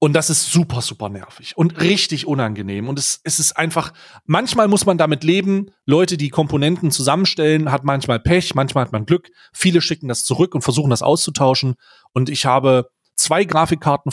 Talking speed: 185 wpm